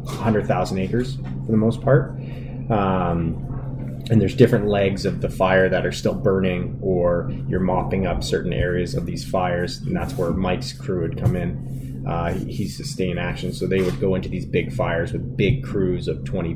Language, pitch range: English, 95-130 Hz